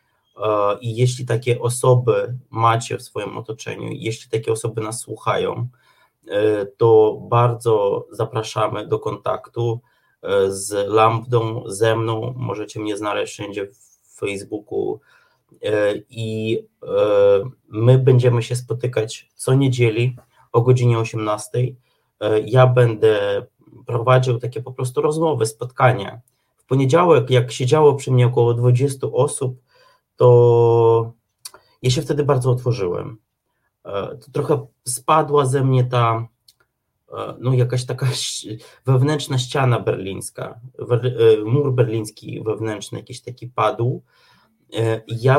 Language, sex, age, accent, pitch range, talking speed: Polish, male, 20-39, native, 115-135 Hz, 105 wpm